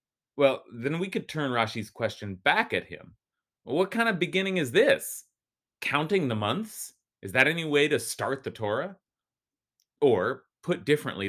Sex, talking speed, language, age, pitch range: male, 160 wpm, English, 30-49, 110-180 Hz